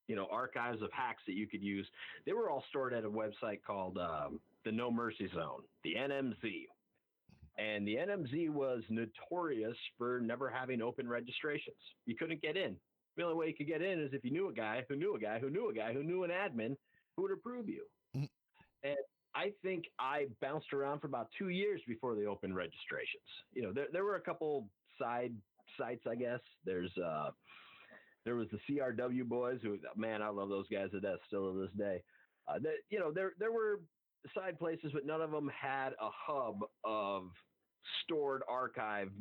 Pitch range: 110-160 Hz